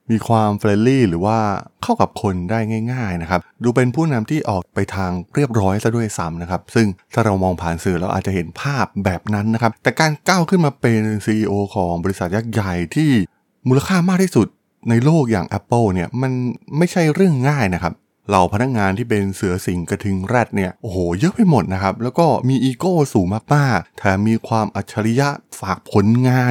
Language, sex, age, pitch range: Thai, male, 20-39, 95-125 Hz